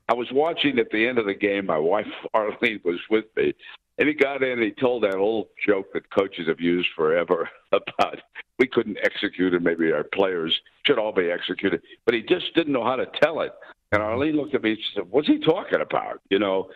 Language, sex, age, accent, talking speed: English, male, 60-79, American, 235 wpm